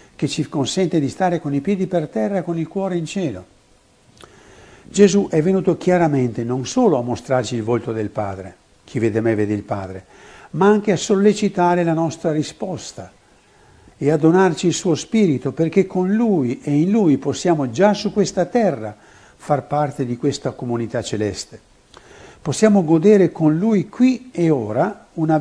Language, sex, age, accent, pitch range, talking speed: Italian, male, 60-79, native, 120-190 Hz, 170 wpm